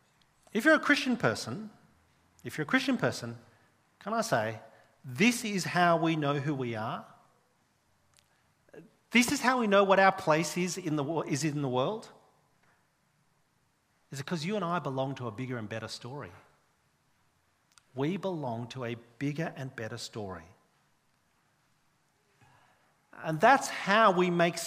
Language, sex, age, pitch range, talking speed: English, male, 40-59, 130-190 Hz, 150 wpm